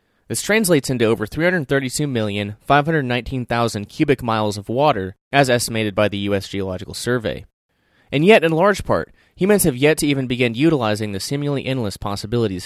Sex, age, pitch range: male, 20-39, 105-135 Hz